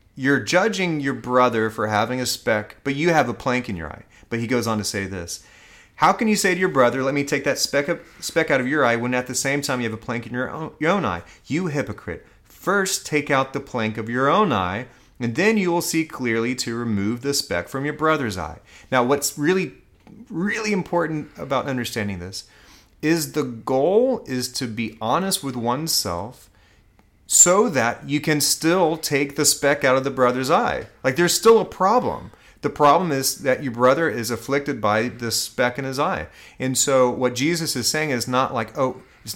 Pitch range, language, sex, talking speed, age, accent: 115-150 Hz, English, male, 215 wpm, 30-49, American